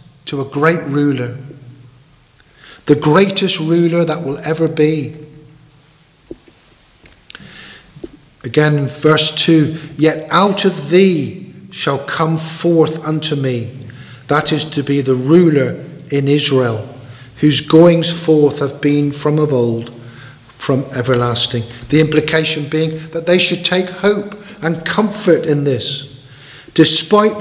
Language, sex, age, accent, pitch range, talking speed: English, male, 50-69, British, 145-180 Hz, 120 wpm